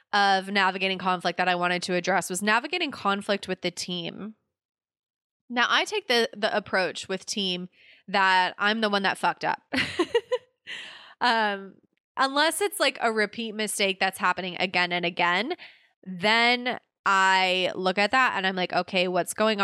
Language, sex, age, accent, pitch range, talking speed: English, female, 20-39, American, 175-215 Hz, 160 wpm